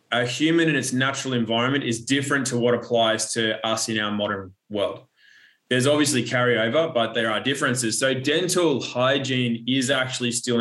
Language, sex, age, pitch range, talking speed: English, male, 20-39, 115-130 Hz, 170 wpm